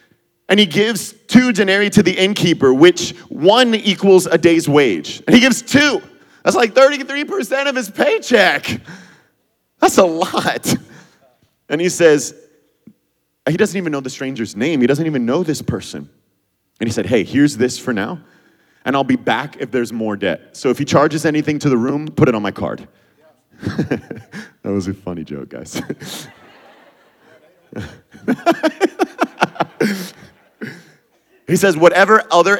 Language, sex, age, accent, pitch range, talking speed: English, male, 30-49, American, 115-185 Hz, 150 wpm